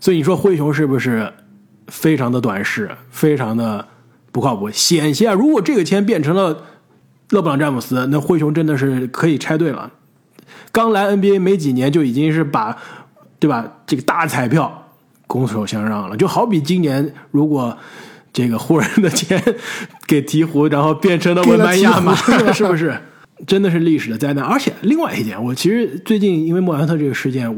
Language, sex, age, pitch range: Chinese, male, 20-39, 125-180 Hz